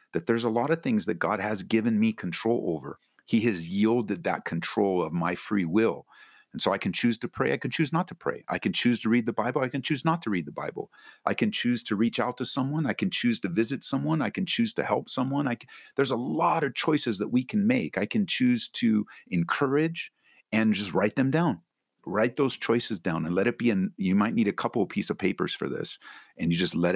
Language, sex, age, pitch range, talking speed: English, male, 50-69, 90-125 Hz, 250 wpm